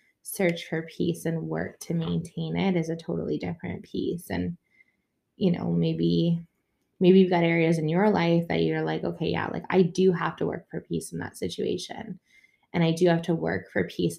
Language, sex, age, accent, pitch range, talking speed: English, female, 20-39, American, 155-175 Hz, 205 wpm